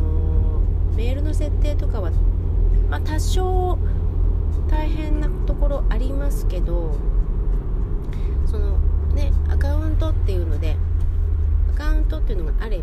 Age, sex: 30-49, female